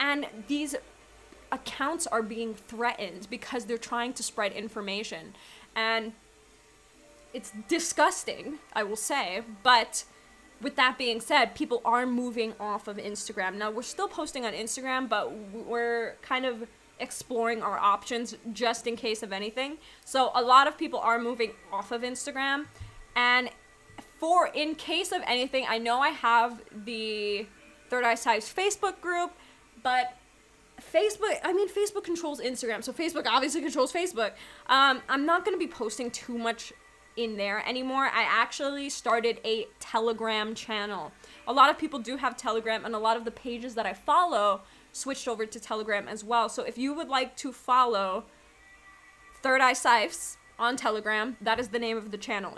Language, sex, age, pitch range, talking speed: English, female, 20-39, 225-275 Hz, 165 wpm